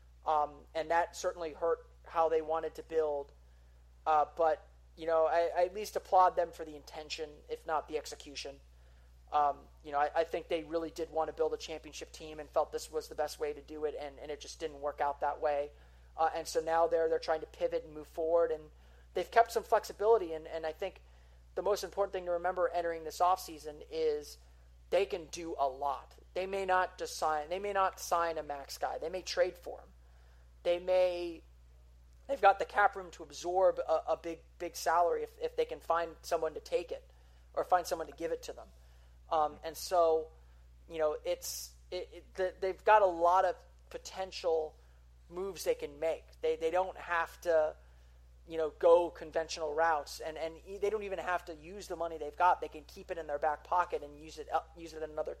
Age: 30-49